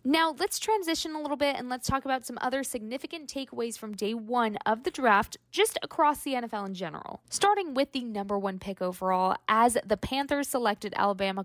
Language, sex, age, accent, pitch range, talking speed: English, female, 20-39, American, 210-290 Hz, 200 wpm